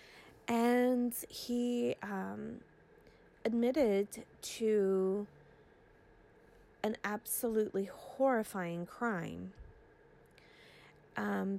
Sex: female